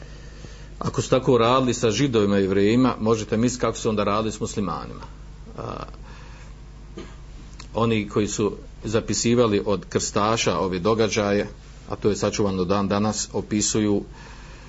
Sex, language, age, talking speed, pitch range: male, Croatian, 50-69, 130 wpm, 100-120 Hz